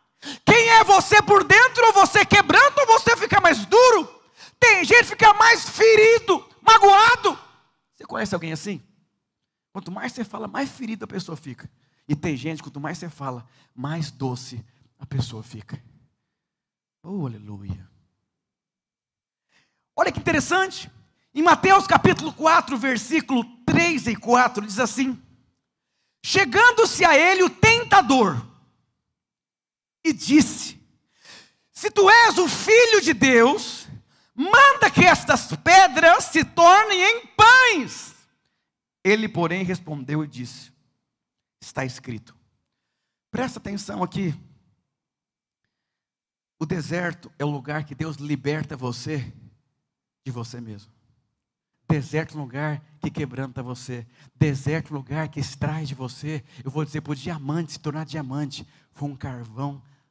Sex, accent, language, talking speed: male, Brazilian, Portuguese, 130 wpm